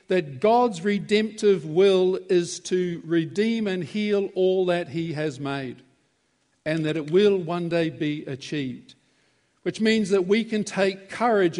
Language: English